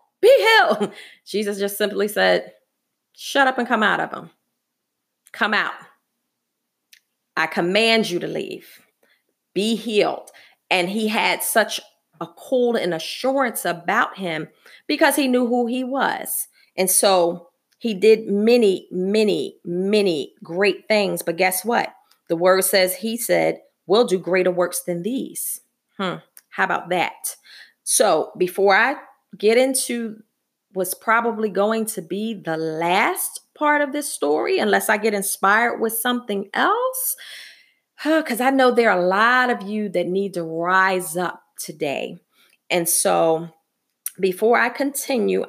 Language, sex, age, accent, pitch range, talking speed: English, female, 30-49, American, 185-245 Hz, 140 wpm